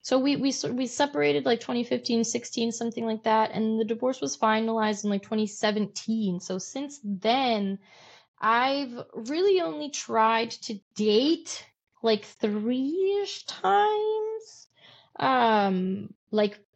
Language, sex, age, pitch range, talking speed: English, female, 20-39, 195-235 Hz, 120 wpm